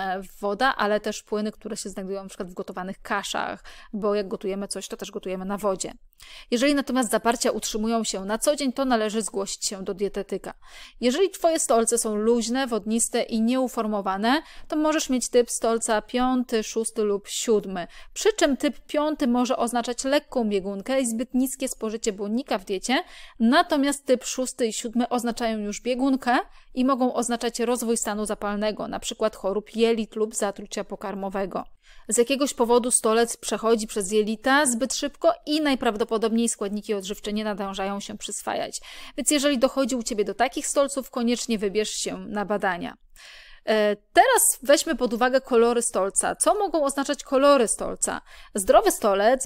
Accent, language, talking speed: native, Polish, 155 wpm